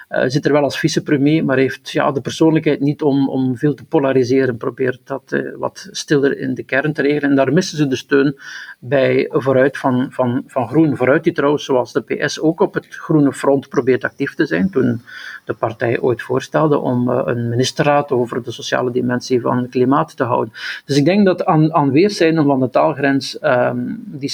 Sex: male